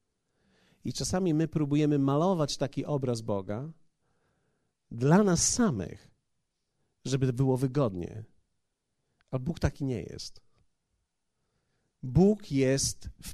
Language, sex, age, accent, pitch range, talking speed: Polish, male, 40-59, native, 130-175 Hz, 100 wpm